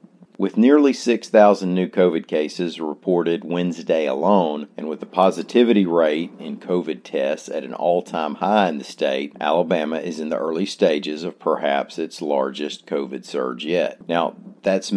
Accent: American